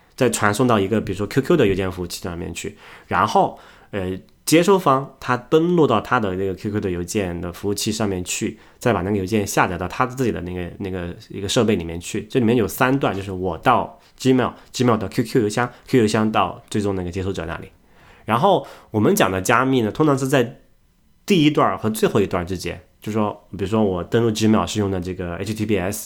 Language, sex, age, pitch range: Chinese, male, 20-39, 95-120 Hz